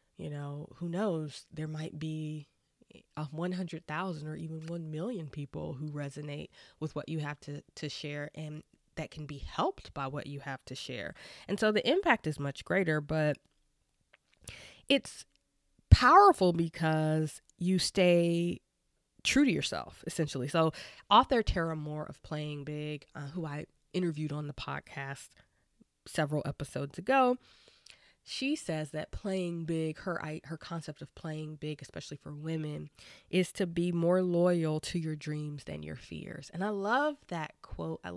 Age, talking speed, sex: 20-39, 155 wpm, female